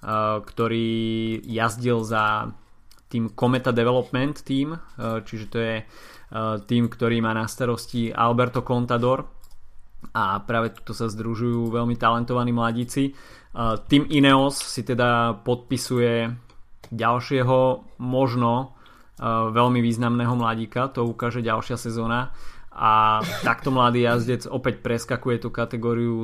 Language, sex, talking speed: Slovak, male, 105 wpm